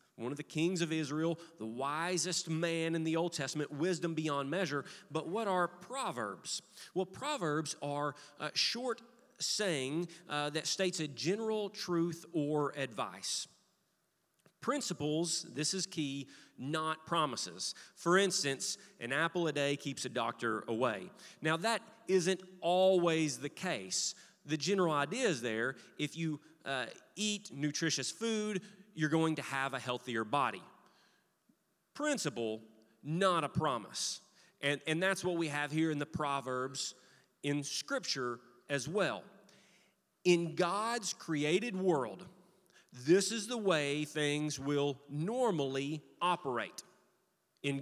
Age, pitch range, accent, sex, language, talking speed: 30-49, 145-185 Hz, American, male, English, 130 wpm